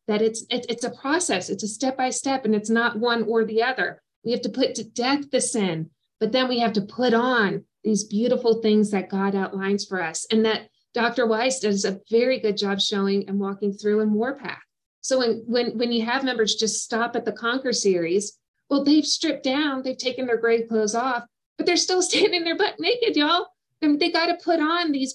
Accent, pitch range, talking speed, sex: American, 200-245 Hz, 220 wpm, female